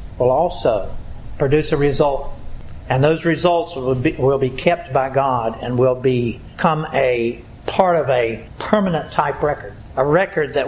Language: English